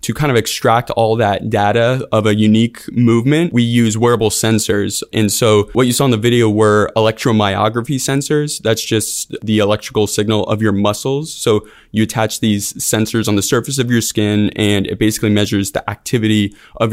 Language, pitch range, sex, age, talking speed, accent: English, 105-115 Hz, male, 20-39, 185 wpm, American